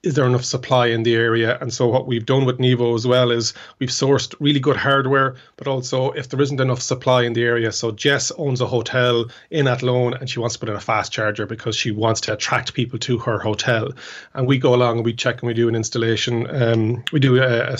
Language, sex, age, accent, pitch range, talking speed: English, male, 30-49, Irish, 120-135 Hz, 250 wpm